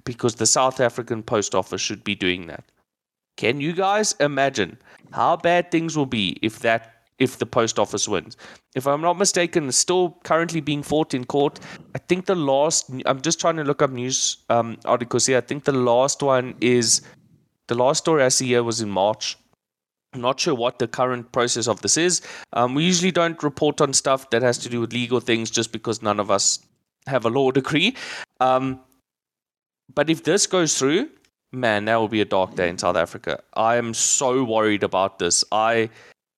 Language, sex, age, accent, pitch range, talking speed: English, male, 20-39, South African, 115-150 Hz, 200 wpm